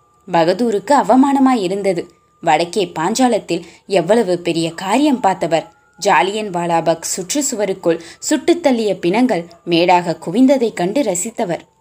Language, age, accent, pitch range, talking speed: Tamil, 20-39, native, 170-245 Hz, 95 wpm